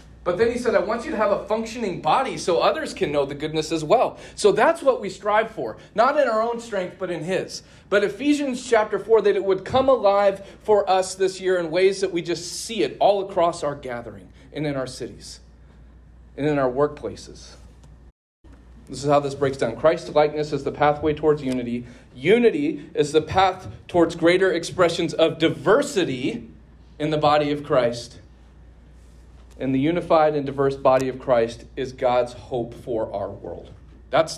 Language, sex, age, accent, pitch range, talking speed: English, male, 40-59, American, 145-215 Hz, 190 wpm